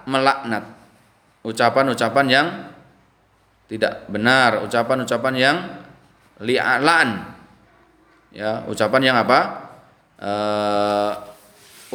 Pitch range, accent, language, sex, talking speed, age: 115-180 Hz, native, Indonesian, male, 65 wpm, 20-39